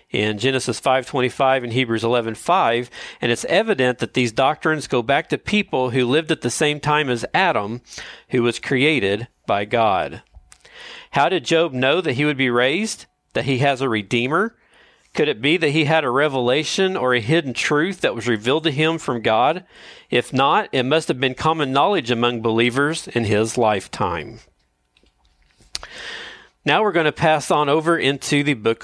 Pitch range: 120-160 Hz